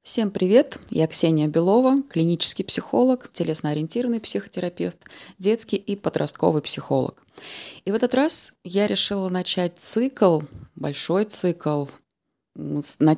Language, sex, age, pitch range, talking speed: Russian, female, 20-39, 155-210 Hz, 110 wpm